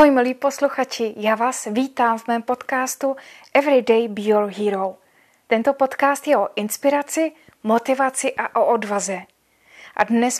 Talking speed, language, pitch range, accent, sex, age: 140 wpm, Czech, 215-270 Hz, native, female, 20-39